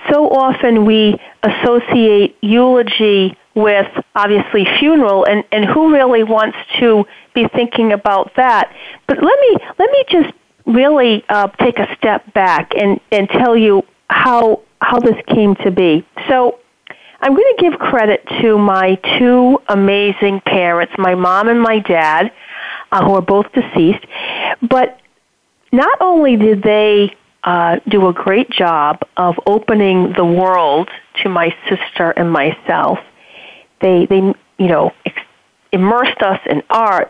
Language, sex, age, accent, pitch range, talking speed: English, female, 40-59, American, 195-250 Hz, 140 wpm